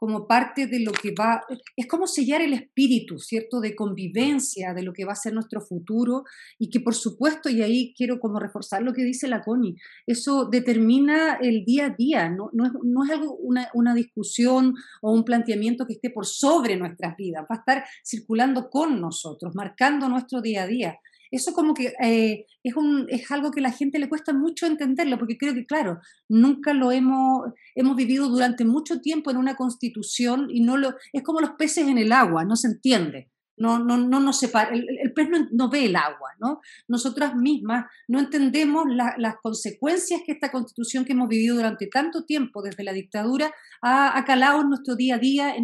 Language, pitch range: Spanish, 225-275 Hz